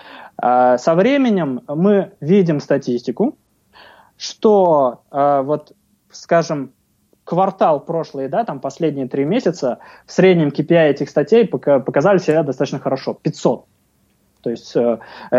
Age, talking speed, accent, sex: 20-39, 100 wpm, native, male